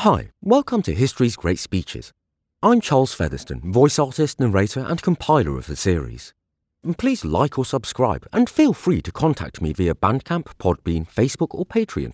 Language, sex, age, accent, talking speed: English, male, 40-59, British, 165 wpm